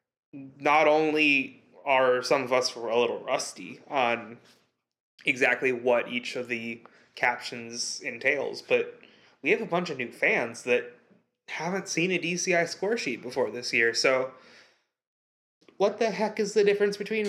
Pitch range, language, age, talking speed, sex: 125-190 Hz, English, 20-39, 155 wpm, male